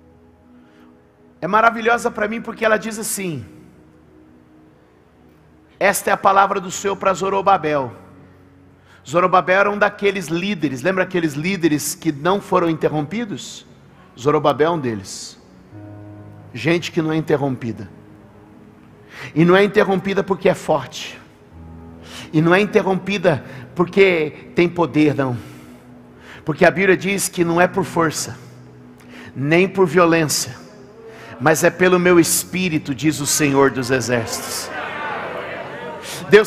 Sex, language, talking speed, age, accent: male, Portuguese, 125 wpm, 50-69, Brazilian